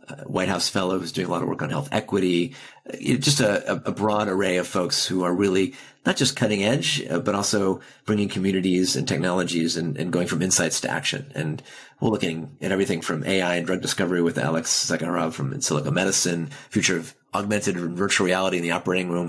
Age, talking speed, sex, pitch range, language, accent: 30-49, 210 wpm, male, 90-105 Hz, English, American